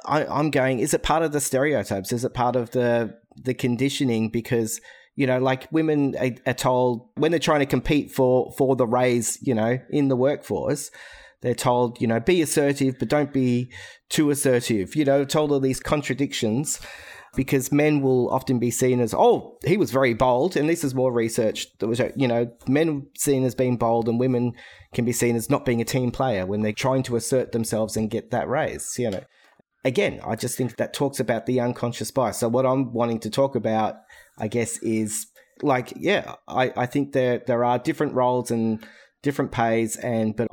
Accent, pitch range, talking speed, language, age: Australian, 115-135 Hz, 205 wpm, English, 30-49